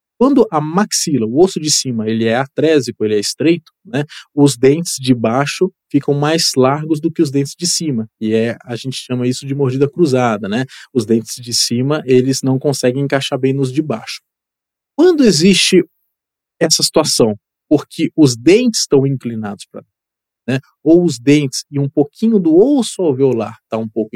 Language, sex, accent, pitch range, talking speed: Portuguese, male, Brazilian, 125-160 Hz, 180 wpm